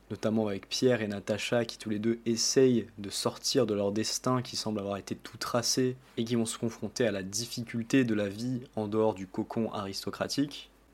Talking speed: 205 wpm